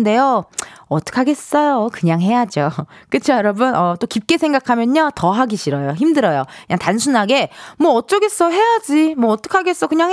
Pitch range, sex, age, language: 200-325 Hz, female, 20-39, Korean